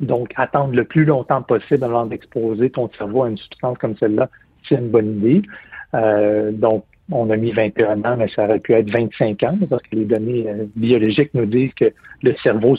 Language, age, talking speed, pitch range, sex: French, 60-79, 200 wpm, 110-135 Hz, male